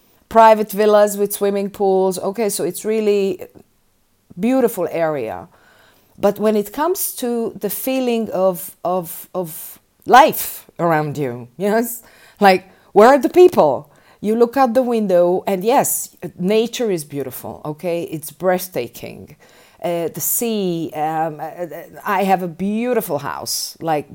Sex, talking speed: female, 135 wpm